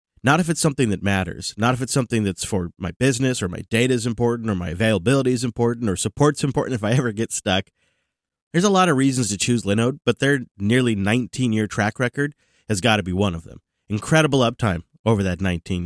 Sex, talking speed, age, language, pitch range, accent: male, 220 wpm, 30-49, English, 95-130 Hz, American